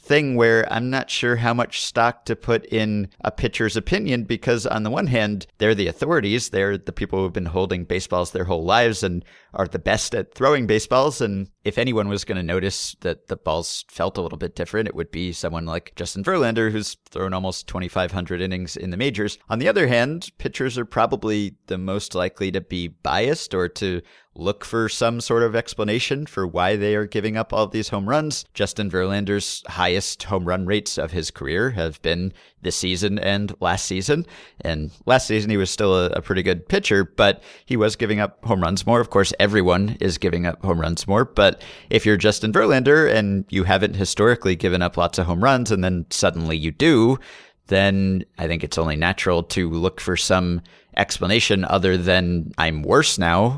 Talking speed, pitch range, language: 200 wpm, 90-115 Hz, English